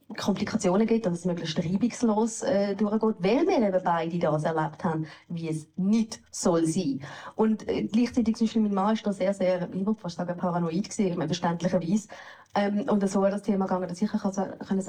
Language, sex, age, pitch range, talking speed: German, female, 30-49, 180-225 Hz, 195 wpm